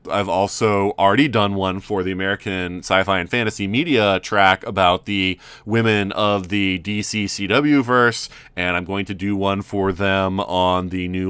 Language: English